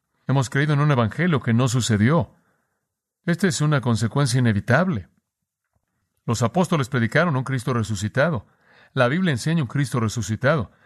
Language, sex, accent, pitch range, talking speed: Spanish, male, Mexican, 125-165 Hz, 140 wpm